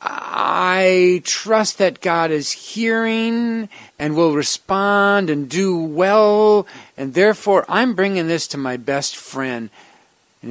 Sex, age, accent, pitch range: male, 50-69, American, 140-195 Hz